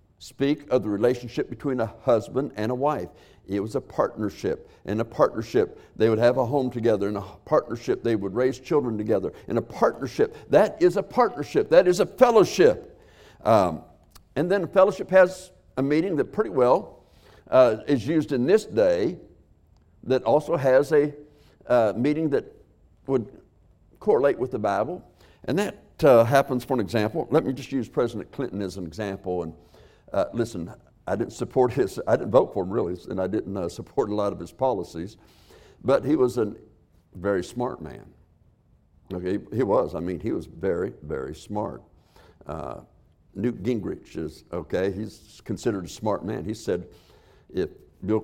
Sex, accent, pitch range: male, American, 95-135 Hz